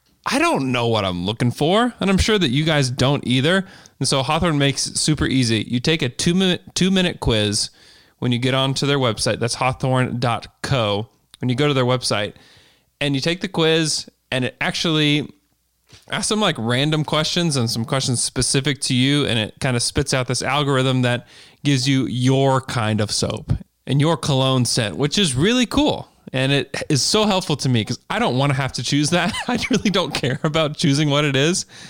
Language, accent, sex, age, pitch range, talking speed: English, American, male, 20-39, 120-155 Hz, 210 wpm